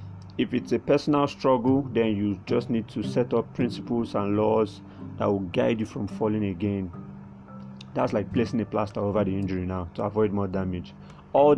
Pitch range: 95-110 Hz